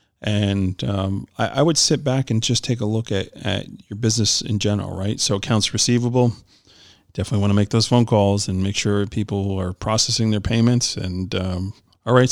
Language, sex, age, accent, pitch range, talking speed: English, male, 40-59, American, 100-115 Hz, 200 wpm